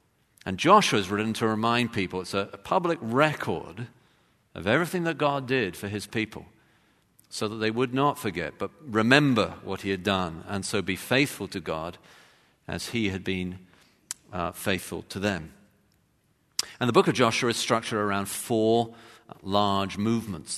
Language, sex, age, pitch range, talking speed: English, male, 50-69, 100-120 Hz, 165 wpm